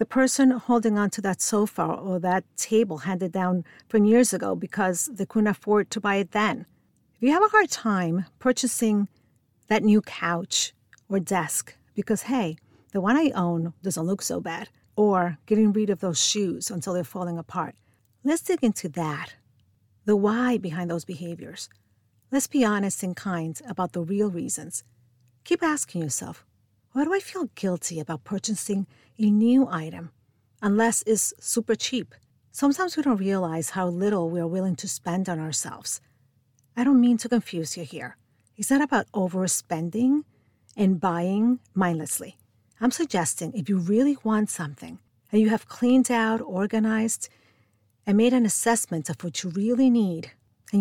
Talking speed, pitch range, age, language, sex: 165 wpm, 165-225 Hz, 50-69, English, female